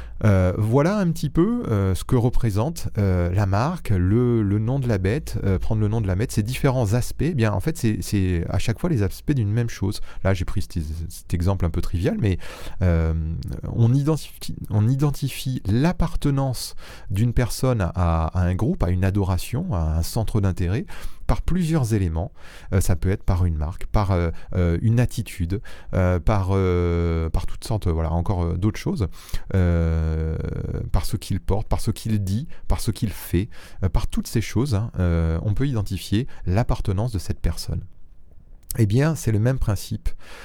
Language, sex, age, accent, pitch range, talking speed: French, male, 30-49, French, 90-115 Hz, 195 wpm